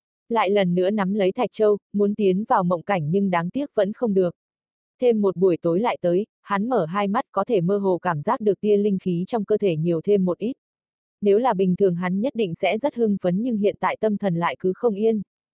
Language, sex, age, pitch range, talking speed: Vietnamese, female, 20-39, 180-220 Hz, 250 wpm